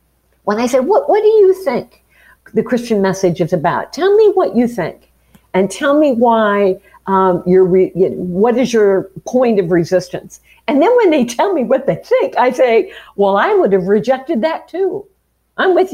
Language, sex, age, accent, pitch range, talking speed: English, female, 50-69, American, 175-265 Hz, 200 wpm